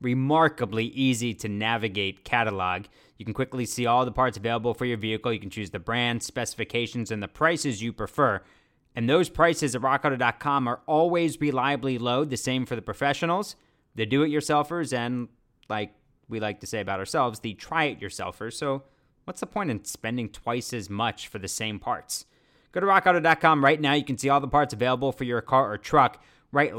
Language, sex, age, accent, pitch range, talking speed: English, male, 30-49, American, 115-150 Hz, 195 wpm